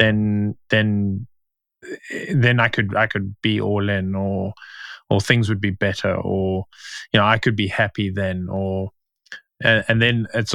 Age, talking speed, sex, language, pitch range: 20-39, 165 wpm, male, English, 100-120 Hz